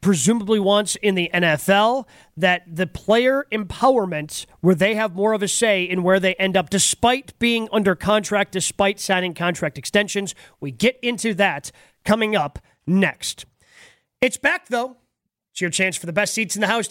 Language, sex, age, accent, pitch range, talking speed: English, male, 30-49, American, 175-230 Hz, 175 wpm